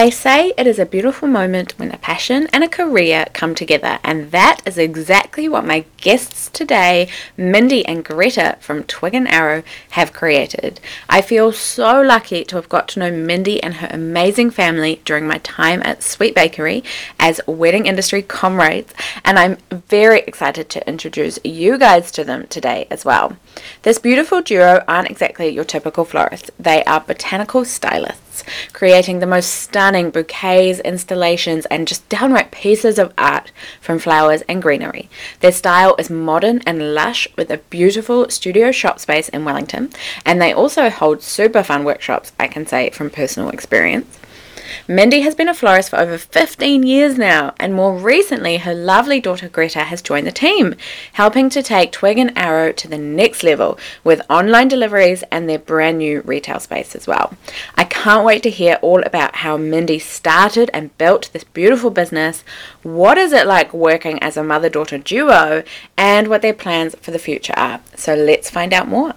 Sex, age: female, 20-39